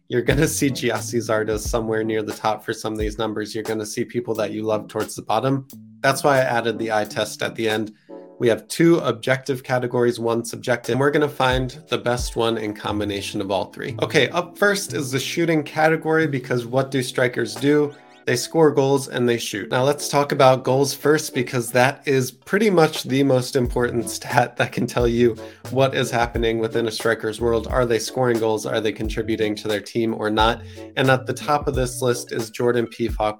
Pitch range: 110-135 Hz